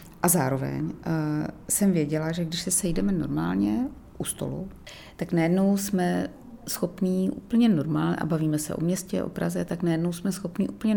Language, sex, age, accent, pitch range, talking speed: Czech, female, 30-49, native, 160-185 Hz, 165 wpm